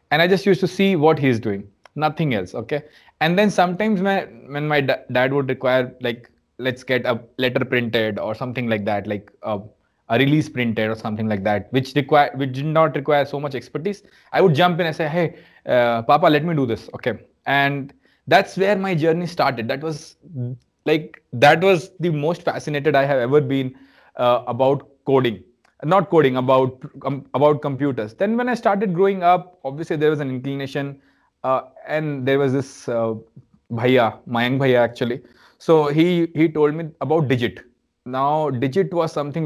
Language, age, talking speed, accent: Hindi, 20-39, 190 wpm, native